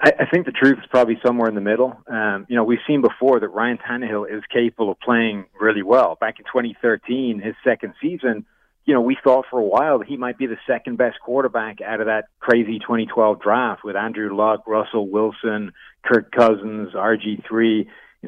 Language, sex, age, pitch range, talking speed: English, male, 40-59, 110-125 Hz, 200 wpm